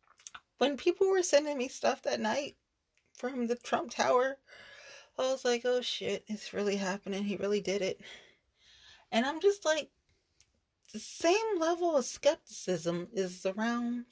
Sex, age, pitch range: female, 30-49, 160-245 Hz